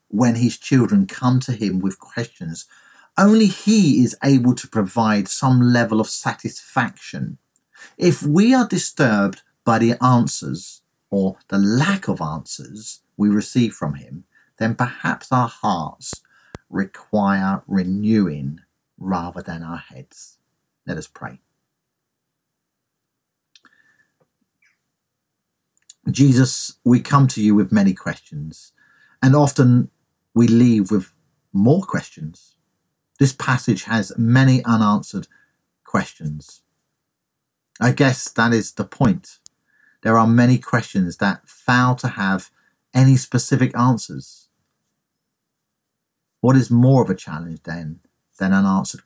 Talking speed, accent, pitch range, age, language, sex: 115 wpm, British, 95-130 Hz, 50-69, English, male